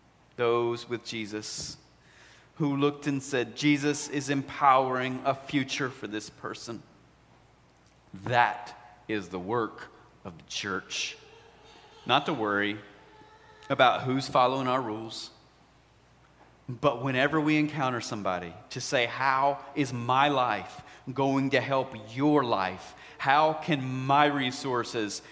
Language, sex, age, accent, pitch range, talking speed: English, male, 40-59, American, 110-140 Hz, 120 wpm